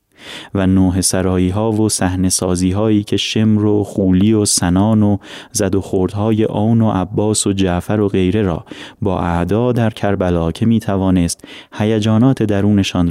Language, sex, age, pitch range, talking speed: Persian, male, 30-49, 95-115 Hz, 160 wpm